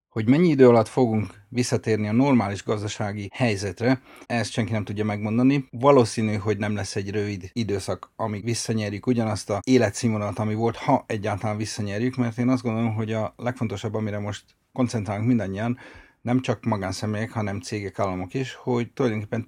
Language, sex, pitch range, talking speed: Hungarian, male, 105-125 Hz, 160 wpm